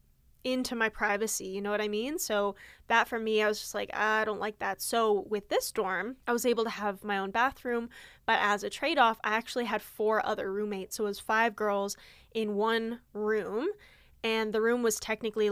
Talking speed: 215 wpm